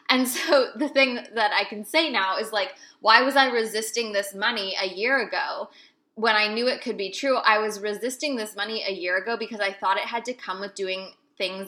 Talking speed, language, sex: 230 wpm, English, female